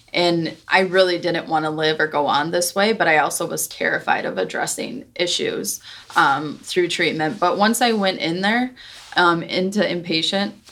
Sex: female